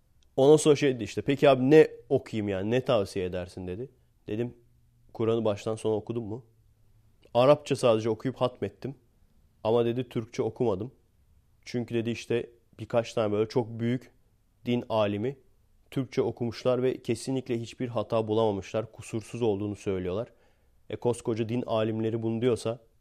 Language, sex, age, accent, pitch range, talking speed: Turkish, male, 30-49, native, 105-125 Hz, 140 wpm